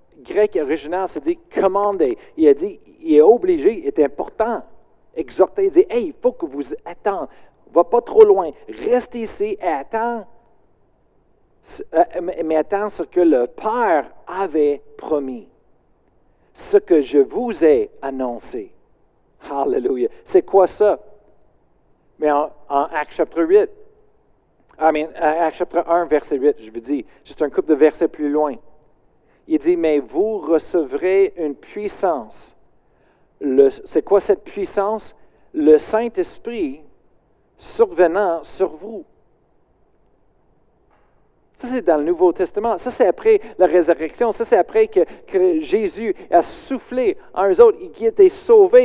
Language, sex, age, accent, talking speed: French, male, 50-69, Canadian, 140 wpm